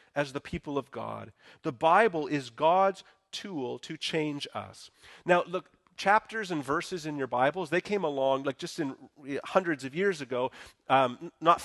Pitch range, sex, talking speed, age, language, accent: 125-170 Hz, male, 170 wpm, 30-49, English, American